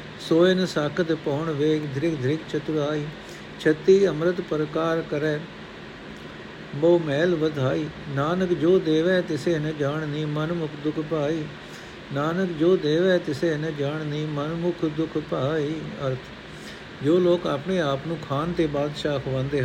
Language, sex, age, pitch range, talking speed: Punjabi, male, 60-79, 140-170 Hz, 135 wpm